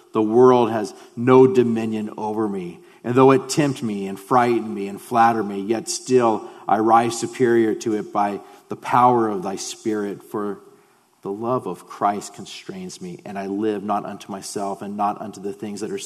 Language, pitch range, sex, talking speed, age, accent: English, 100-130 Hz, male, 190 wpm, 40-59, American